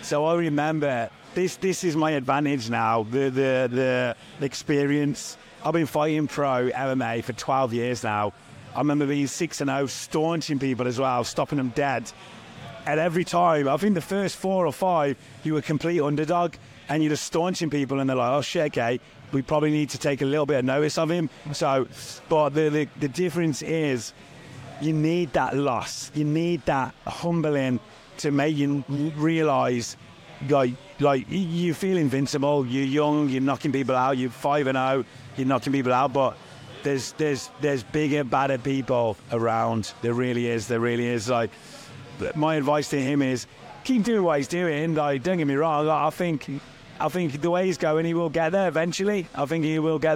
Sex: male